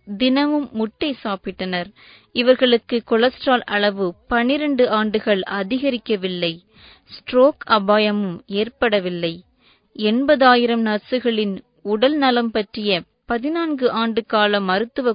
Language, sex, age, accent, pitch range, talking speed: English, female, 20-39, Indian, 200-245 Hz, 85 wpm